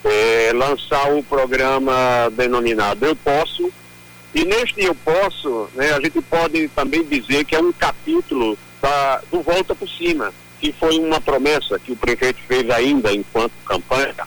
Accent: Brazilian